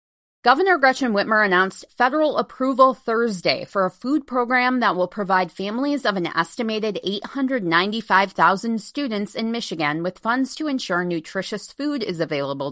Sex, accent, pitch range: female, American, 165-245 Hz